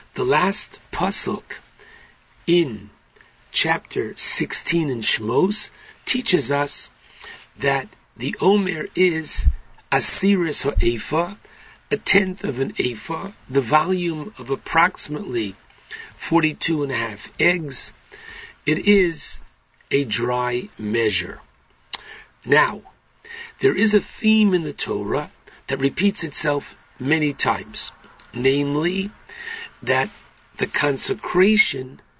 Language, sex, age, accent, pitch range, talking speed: English, male, 50-69, American, 145-195 Hz, 100 wpm